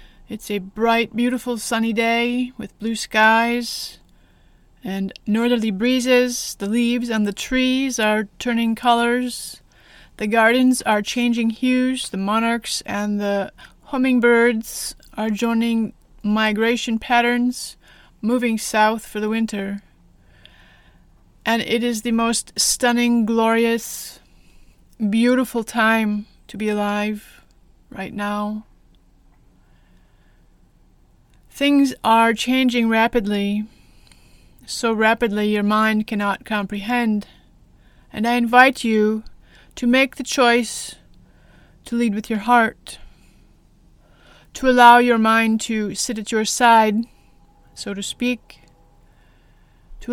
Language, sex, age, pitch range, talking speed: English, female, 30-49, 210-240 Hz, 105 wpm